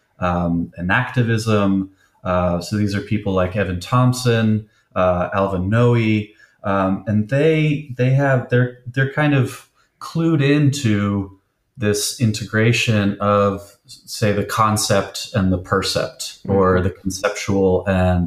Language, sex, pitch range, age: English, male, 100-125 Hz, 30-49